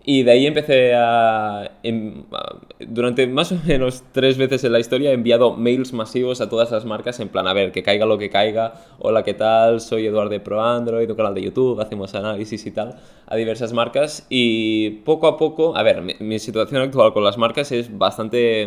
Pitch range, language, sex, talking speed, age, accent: 105-120 Hz, Spanish, male, 210 wpm, 20-39, Spanish